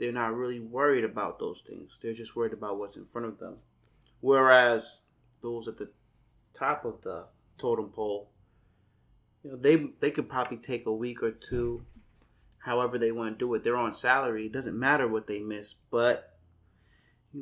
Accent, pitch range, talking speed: American, 110-130 Hz, 185 wpm